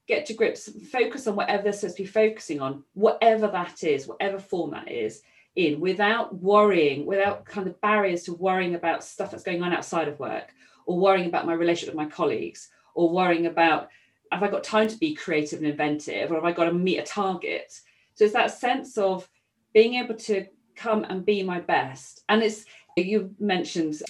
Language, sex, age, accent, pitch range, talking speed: English, female, 40-59, British, 175-220 Hz, 205 wpm